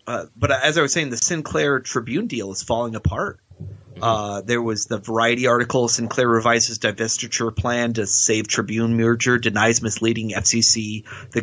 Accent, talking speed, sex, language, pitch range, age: American, 165 wpm, male, English, 110-130 Hz, 30-49